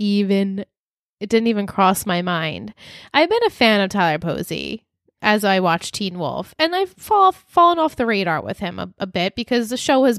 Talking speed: 205 wpm